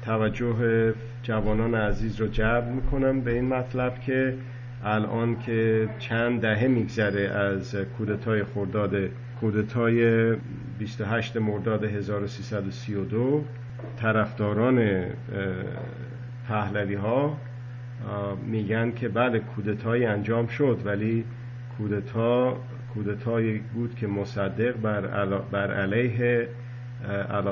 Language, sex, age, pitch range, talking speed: Persian, male, 50-69, 105-120 Hz, 85 wpm